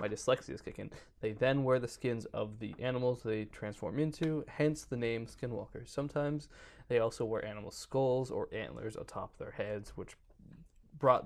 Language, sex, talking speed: English, male, 170 wpm